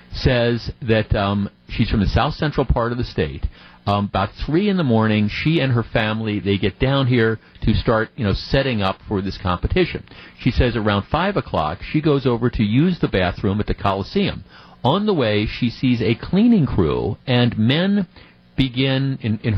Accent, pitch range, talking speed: American, 100-125 Hz, 195 wpm